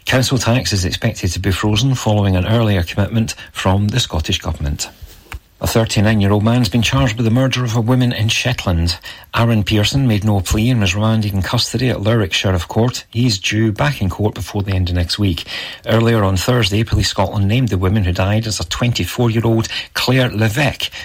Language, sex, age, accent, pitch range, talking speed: English, male, 40-59, British, 95-120 Hz, 195 wpm